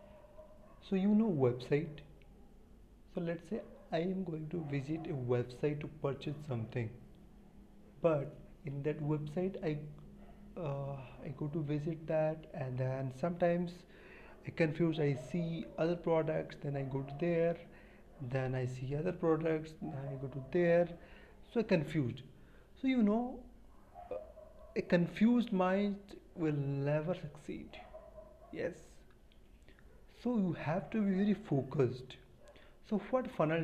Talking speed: 135 wpm